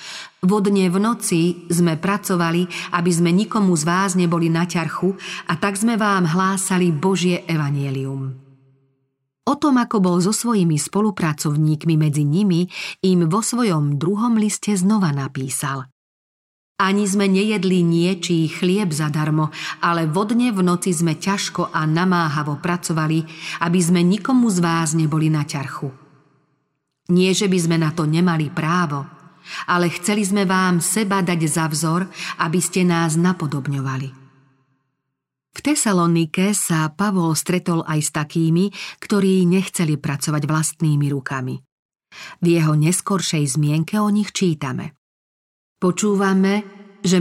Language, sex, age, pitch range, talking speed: Slovak, female, 40-59, 155-190 Hz, 130 wpm